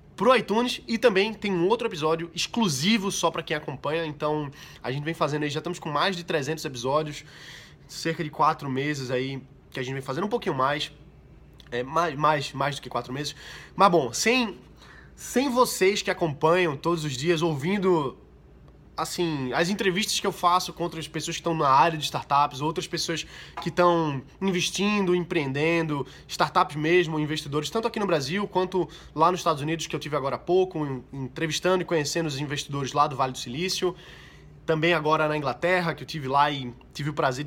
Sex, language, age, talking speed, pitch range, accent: male, Portuguese, 20-39, 185 wpm, 145-180 Hz, Brazilian